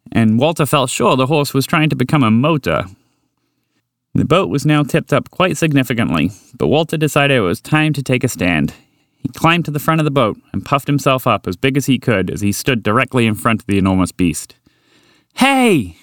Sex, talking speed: male, 215 wpm